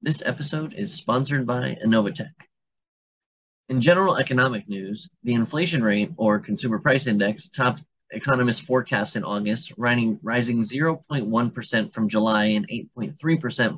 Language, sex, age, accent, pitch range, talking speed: English, male, 20-39, American, 110-140 Hz, 120 wpm